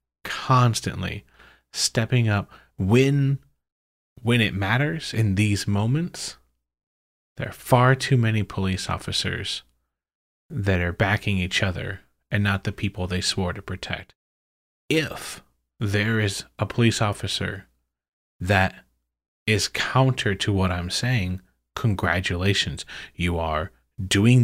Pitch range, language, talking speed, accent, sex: 85-110 Hz, English, 115 wpm, American, male